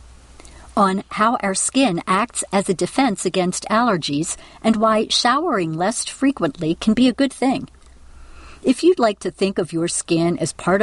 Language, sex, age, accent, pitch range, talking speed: English, female, 50-69, American, 175-225 Hz, 165 wpm